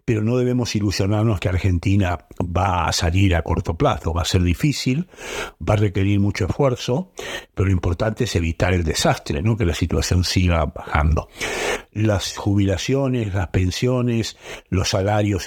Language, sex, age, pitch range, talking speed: Spanish, male, 60-79, 90-115 Hz, 150 wpm